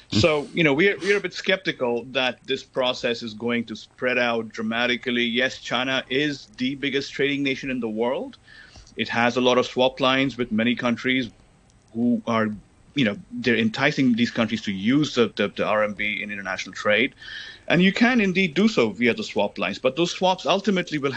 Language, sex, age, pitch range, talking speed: English, male, 30-49, 115-145 Hz, 200 wpm